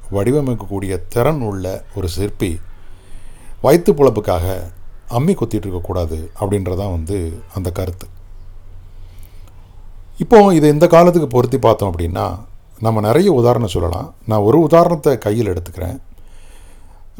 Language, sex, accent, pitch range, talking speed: Tamil, male, native, 95-125 Hz, 100 wpm